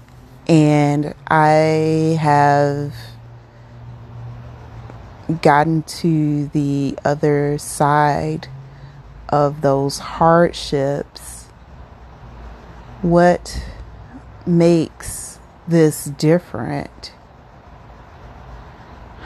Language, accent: English, American